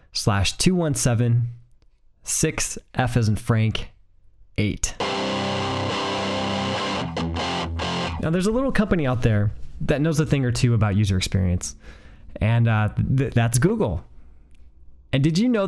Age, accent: 20-39, American